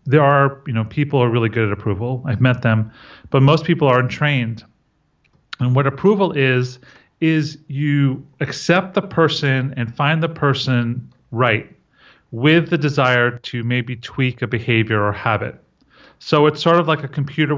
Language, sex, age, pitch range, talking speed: English, male, 40-59, 120-150 Hz, 165 wpm